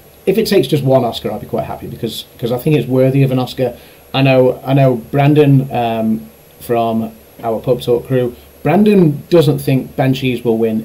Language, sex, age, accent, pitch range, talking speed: English, male, 30-49, British, 115-140 Hz, 200 wpm